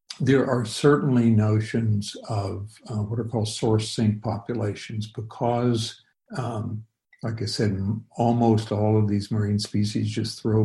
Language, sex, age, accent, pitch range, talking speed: English, male, 60-79, American, 105-115 Hz, 145 wpm